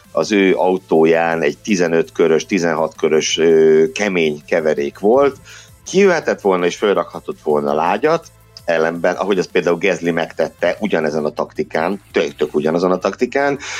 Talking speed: 120 wpm